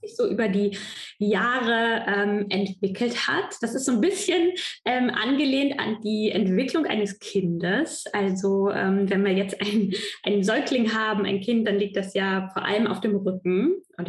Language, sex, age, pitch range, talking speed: German, female, 10-29, 195-240 Hz, 165 wpm